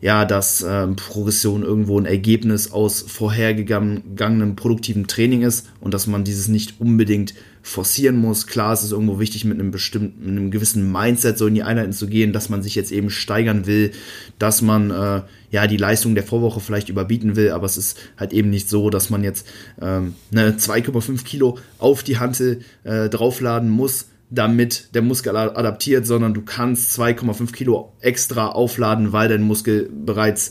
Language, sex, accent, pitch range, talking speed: German, male, German, 105-120 Hz, 175 wpm